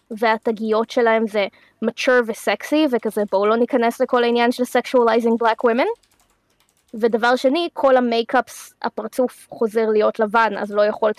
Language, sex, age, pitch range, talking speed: Hebrew, female, 20-39, 220-255 Hz, 140 wpm